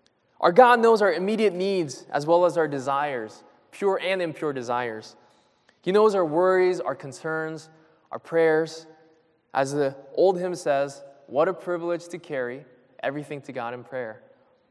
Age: 20-39